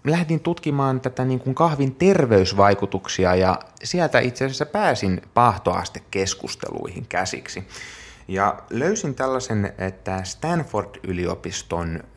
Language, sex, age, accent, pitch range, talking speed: Finnish, male, 30-49, native, 90-125 Hz, 95 wpm